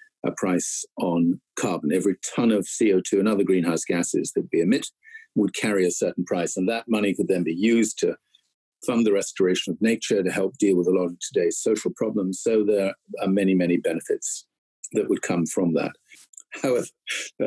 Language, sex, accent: English, male, British